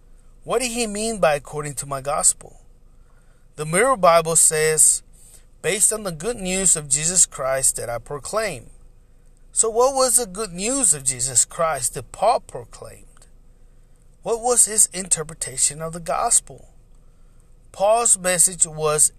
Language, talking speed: English, 145 wpm